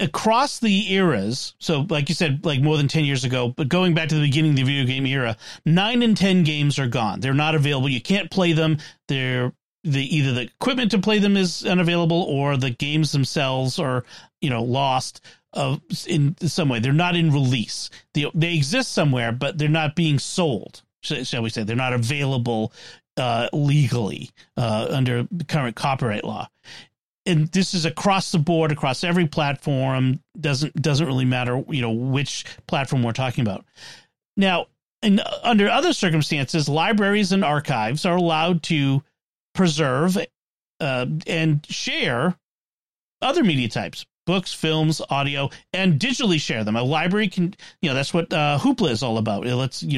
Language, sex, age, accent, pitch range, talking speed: English, male, 40-59, American, 130-175 Hz, 175 wpm